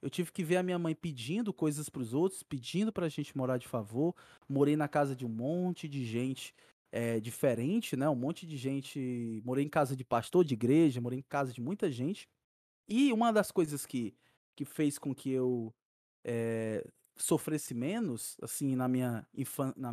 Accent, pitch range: Brazilian, 135-185 Hz